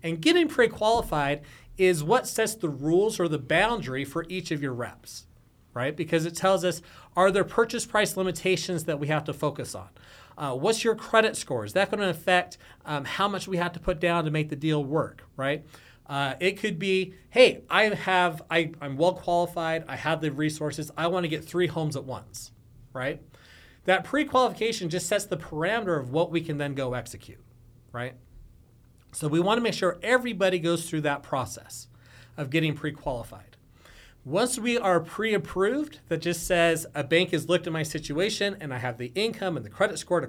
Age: 30-49